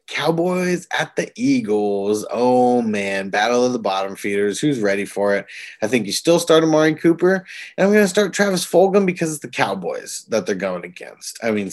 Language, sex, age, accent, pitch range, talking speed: English, male, 20-39, American, 100-150 Hz, 200 wpm